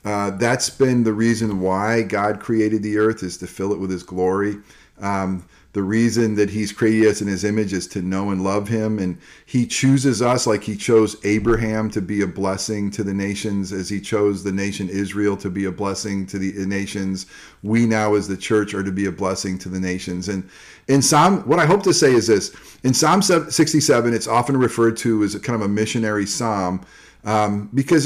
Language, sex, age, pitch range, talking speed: English, male, 40-59, 100-115 Hz, 215 wpm